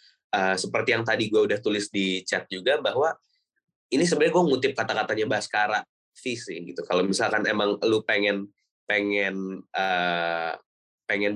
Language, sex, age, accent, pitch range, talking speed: Indonesian, male, 20-39, native, 100-135 Hz, 145 wpm